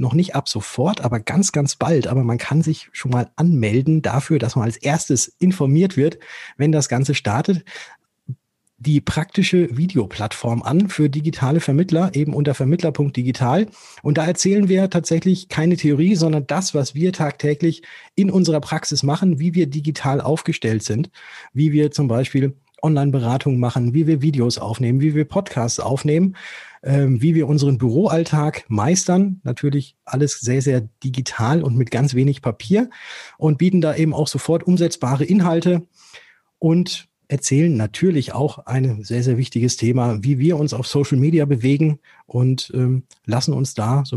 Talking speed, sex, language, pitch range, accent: 160 wpm, male, German, 130-165 Hz, German